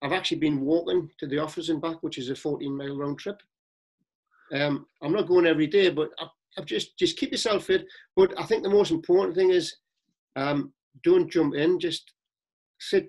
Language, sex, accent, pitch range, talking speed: English, male, British, 145-210 Hz, 200 wpm